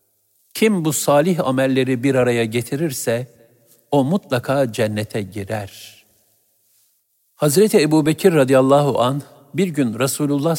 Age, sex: 60-79, male